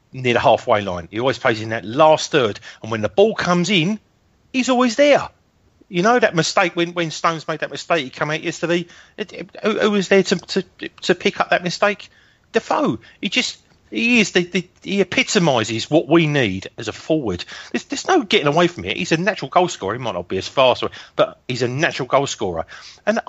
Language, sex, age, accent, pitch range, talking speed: English, male, 40-59, British, 145-195 Hz, 205 wpm